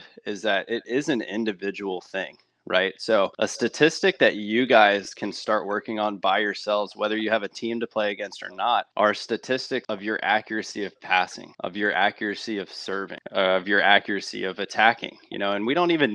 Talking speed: 195 wpm